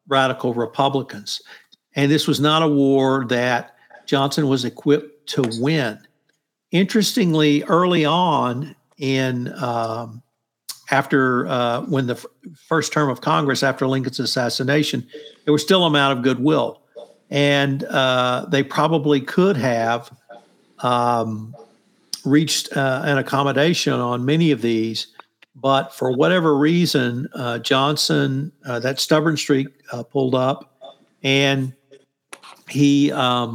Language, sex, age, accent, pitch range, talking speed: English, male, 60-79, American, 125-150 Hz, 120 wpm